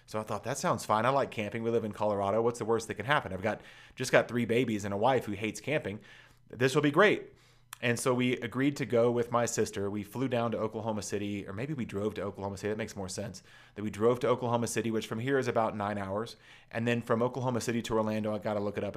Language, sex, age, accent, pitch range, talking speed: English, male, 30-49, American, 105-120 Hz, 275 wpm